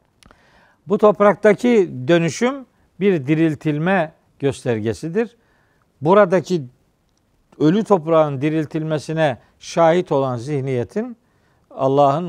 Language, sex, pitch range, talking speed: Turkish, male, 125-175 Hz, 70 wpm